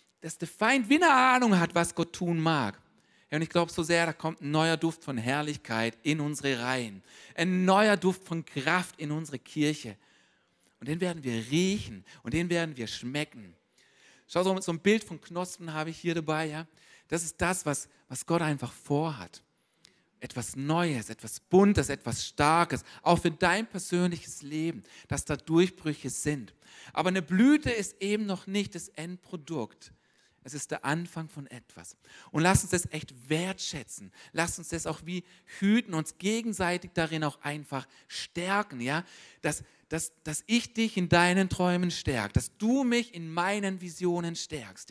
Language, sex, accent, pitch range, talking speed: German, male, German, 145-185 Hz, 170 wpm